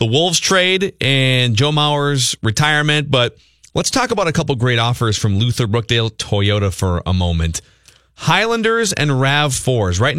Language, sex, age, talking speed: English, male, 30-49, 160 wpm